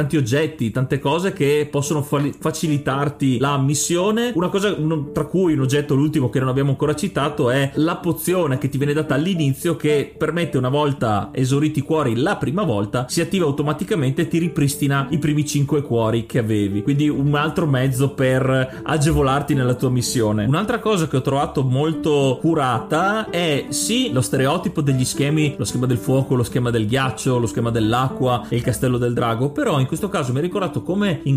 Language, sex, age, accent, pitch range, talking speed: Italian, male, 30-49, native, 130-165 Hz, 190 wpm